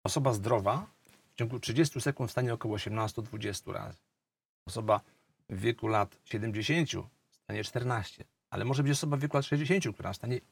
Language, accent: Polish, native